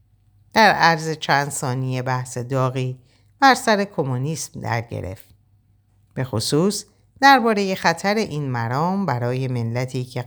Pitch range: 110-150 Hz